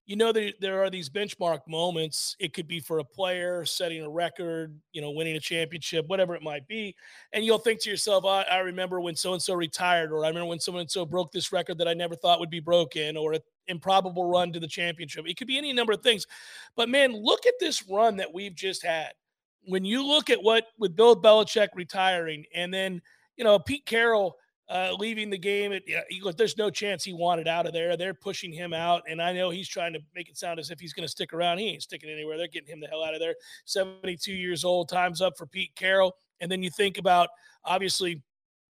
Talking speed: 235 wpm